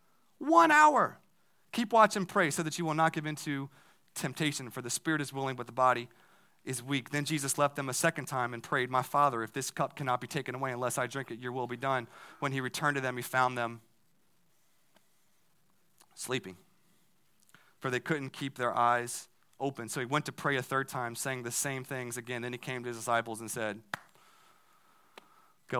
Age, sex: 30-49, male